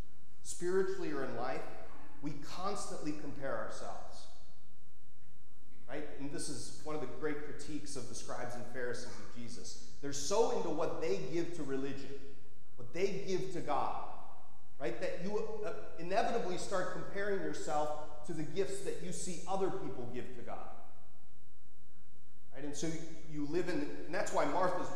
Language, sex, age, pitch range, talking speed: English, male, 30-49, 130-185 Hz, 155 wpm